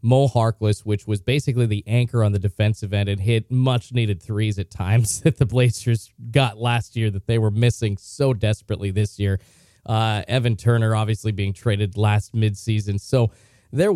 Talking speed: 175 wpm